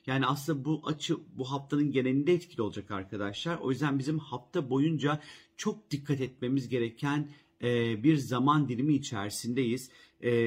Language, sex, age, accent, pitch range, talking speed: Turkish, male, 40-59, native, 130-155 Hz, 145 wpm